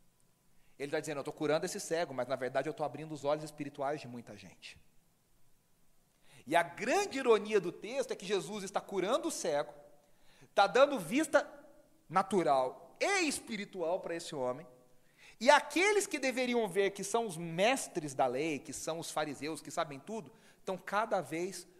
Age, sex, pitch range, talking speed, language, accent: 40-59, male, 155-235 Hz, 175 wpm, Portuguese, Brazilian